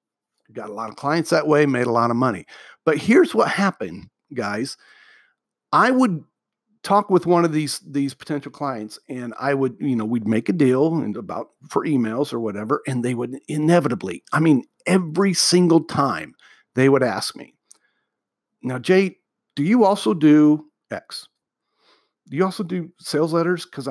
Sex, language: male, English